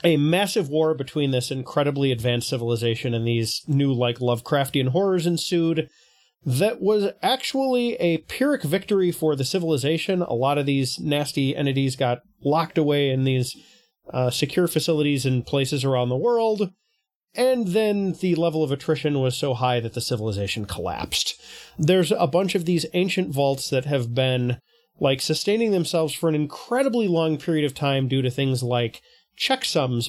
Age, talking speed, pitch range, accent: 30-49, 160 wpm, 135-180 Hz, American